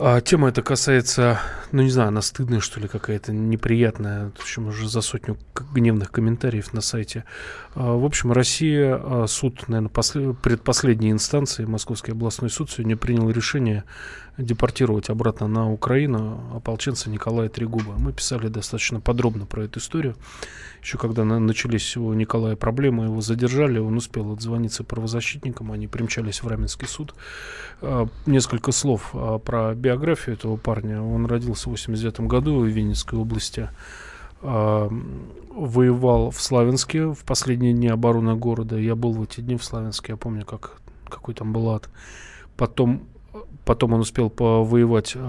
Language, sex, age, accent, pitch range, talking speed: Russian, male, 20-39, native, 110-125 Hz, 140 wpm